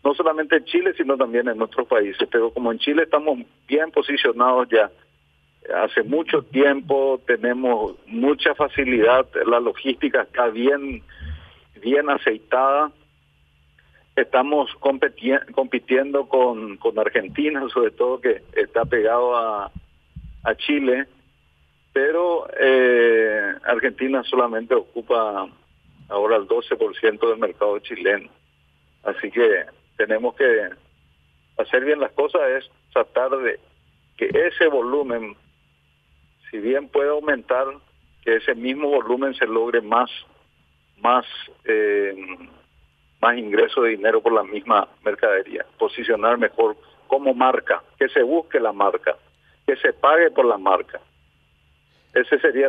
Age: 40-59